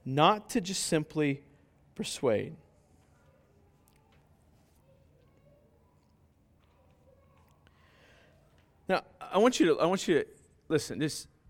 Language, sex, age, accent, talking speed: English, male, 30-49, American, 85 wpm